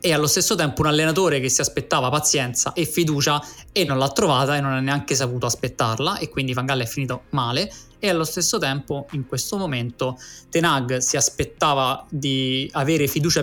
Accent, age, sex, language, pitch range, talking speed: native, 20-39, male, Italian, 125-150 Hz, 190 wpm